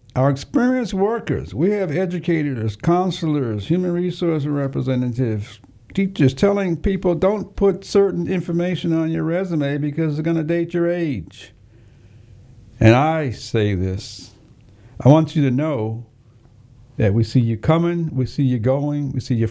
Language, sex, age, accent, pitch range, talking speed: English, male, 60-79, American, 105-155 Hz, 150 wpm